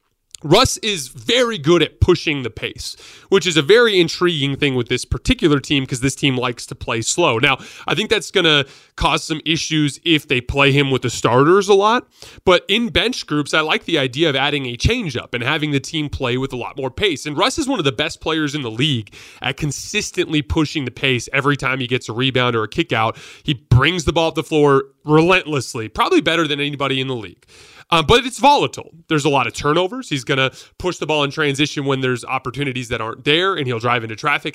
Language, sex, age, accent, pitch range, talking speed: English, male, 30-49, American, 130-165 Hz, 235 wpm